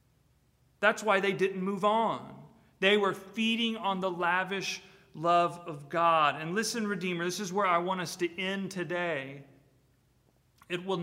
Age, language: 40-59, English